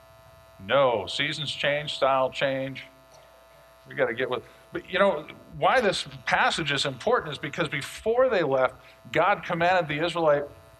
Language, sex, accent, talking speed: English, male, American, 150 wpm